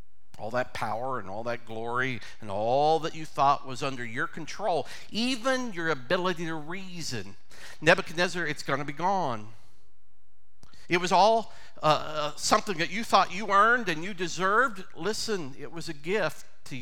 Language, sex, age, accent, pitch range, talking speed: English, male, 50-69, American, 125-200 Hz, 165 wpm